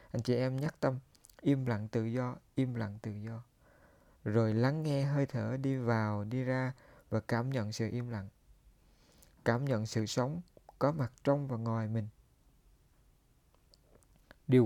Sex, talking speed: male, 160 wpm